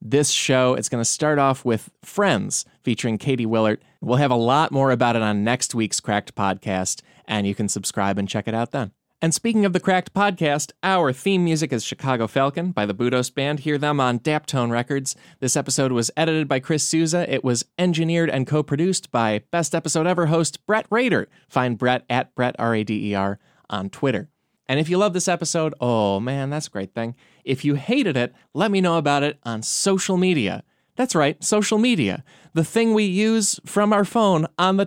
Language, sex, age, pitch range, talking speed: English, male, 20-39, 120-180 Hz, 200 wpm